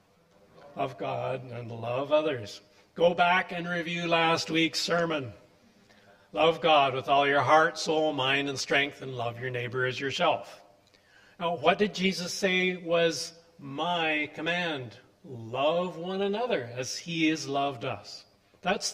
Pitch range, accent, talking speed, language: 120-170 Hz, American, 145 wpm, English